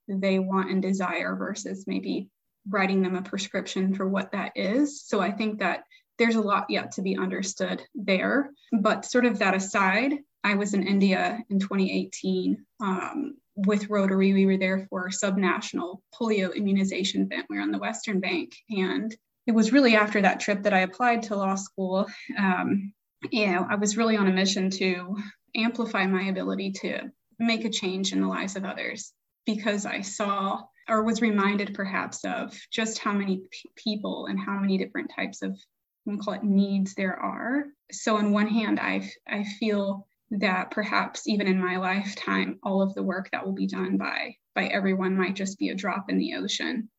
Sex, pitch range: female, 190-220 Hz